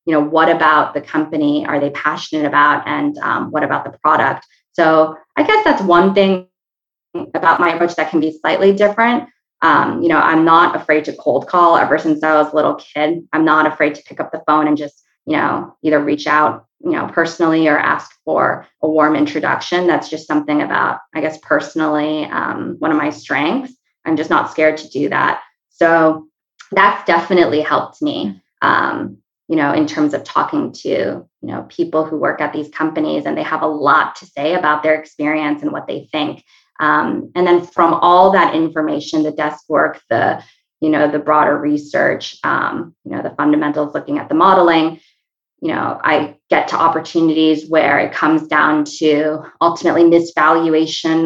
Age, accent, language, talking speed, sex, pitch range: 20-39, American, English, 190 wpm, female, 150-170 Hz